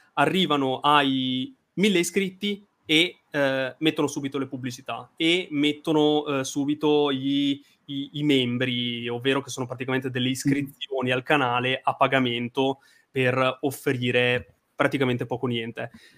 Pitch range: 125-160 Hz